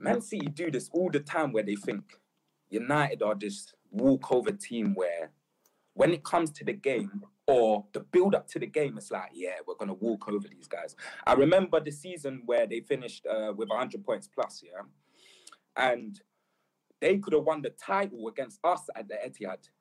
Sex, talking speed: male, 190 wpm